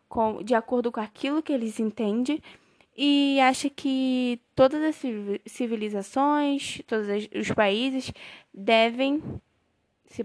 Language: Portuguese